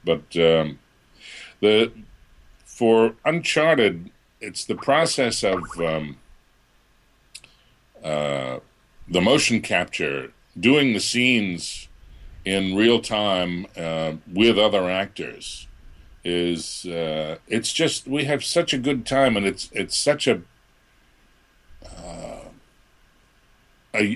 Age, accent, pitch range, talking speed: 50-69, American, 80-110 Hz, 100 wpm